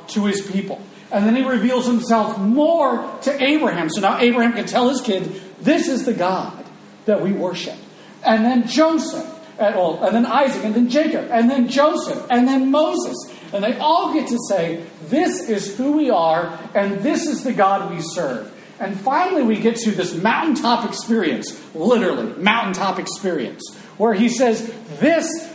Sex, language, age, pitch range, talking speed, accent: male, English, 40-59, 190-260 Hz, 170 wpm, American